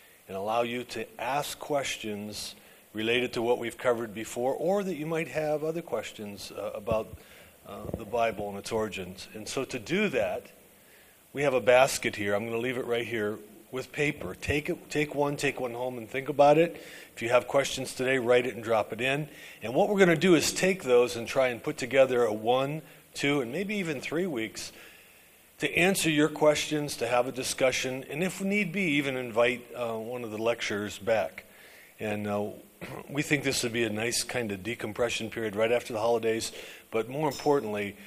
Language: English